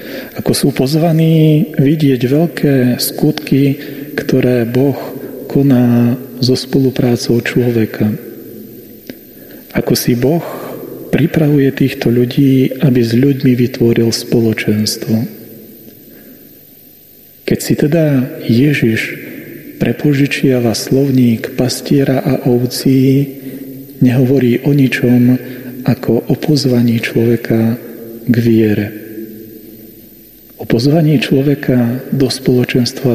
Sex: male